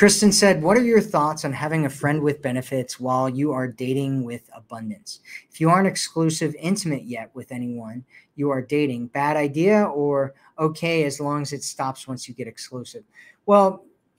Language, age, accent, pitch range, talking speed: English, 40-59, American, 135-165 Hz, 180 wpm